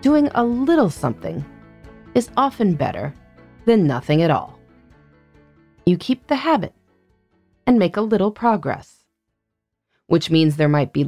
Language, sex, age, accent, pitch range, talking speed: English, female, 30-49, American, 150-235 Hz, 135 wpm